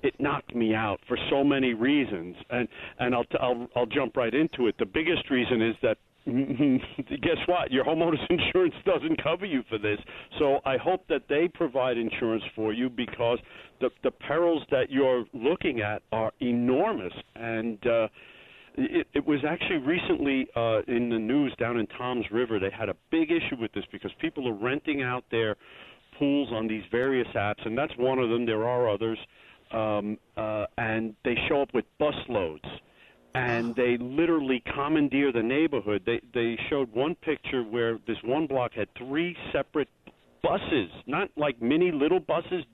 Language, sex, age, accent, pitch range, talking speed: English, male, 50-69, American, 115-150 Hz, 175 wpm